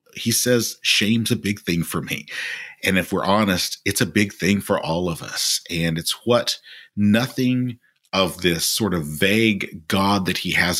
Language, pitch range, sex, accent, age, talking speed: English, 90-115 Hz, male, American, 40-59, 185 wpm